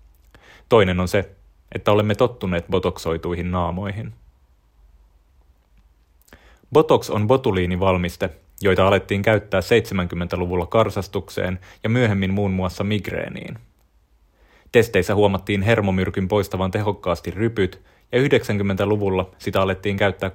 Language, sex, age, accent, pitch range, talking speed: Finnish, male, 30-49, native, 85-100 Hz, 95 wpm